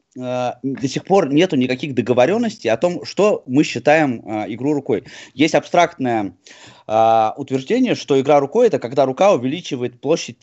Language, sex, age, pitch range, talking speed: Russian, male, 20-39, 120-155 Hz, 155 wpm